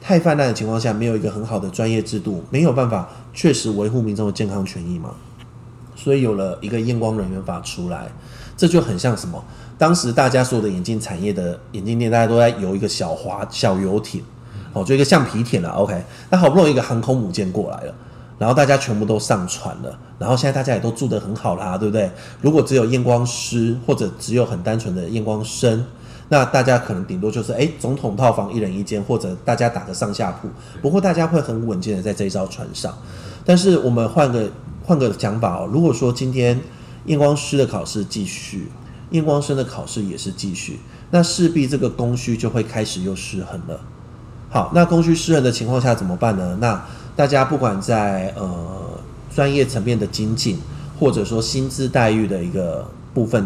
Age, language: 30-49, Chinese